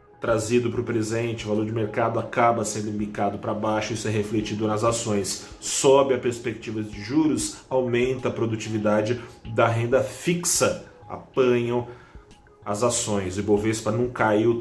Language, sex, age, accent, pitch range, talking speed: Portuguese, male, 30-49, Brazilian, 105-125 Hz, 150 wpm